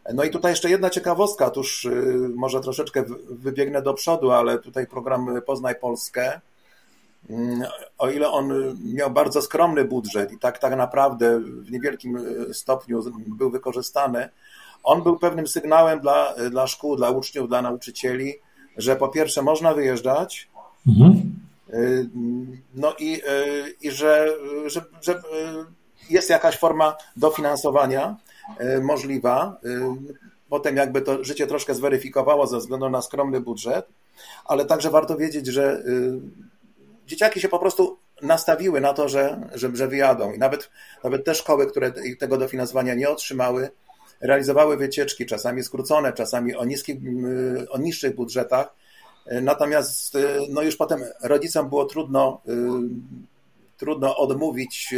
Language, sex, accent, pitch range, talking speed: Polish, male, native, 125-155 Hz, 125 wpm